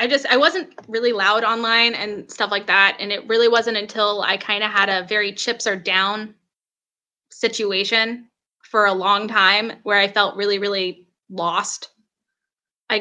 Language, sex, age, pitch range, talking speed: English, female, 10-29, 200-240 Hz, 170 wpm